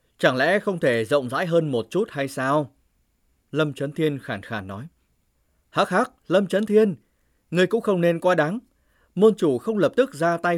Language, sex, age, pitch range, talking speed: Vietnamese, male, 20-39, 115-175 Hz, 200 wpm